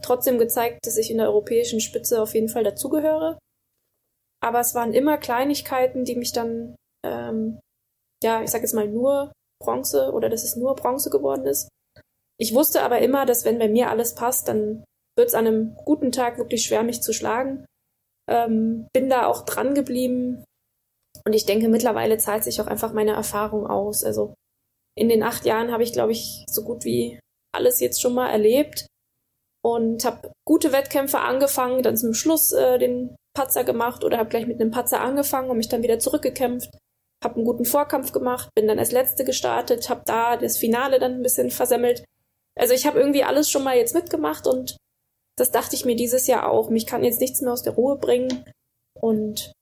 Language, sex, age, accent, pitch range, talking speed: English, female, 20-39, German, 220-260 Hz, 195 wpm